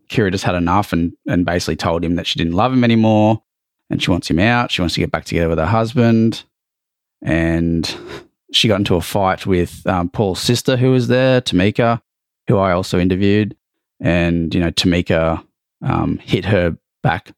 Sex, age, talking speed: male, 20-39, 190 wpm